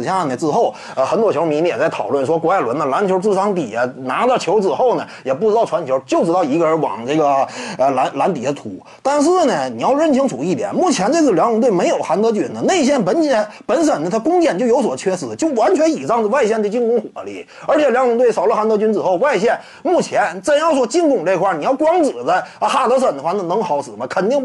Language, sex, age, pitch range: Chinese, male, 30-49, 220-315 Hz